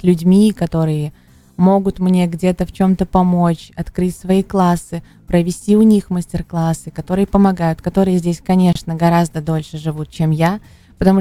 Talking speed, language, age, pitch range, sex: 140 wpm, Russian, 20-39, 165-190 Hz, female